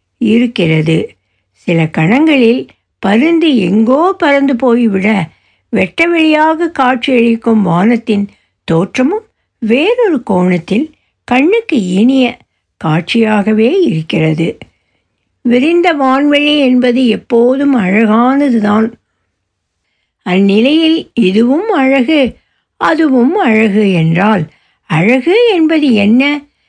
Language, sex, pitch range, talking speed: Tamil, female, 195-310 Hz, 70 wpm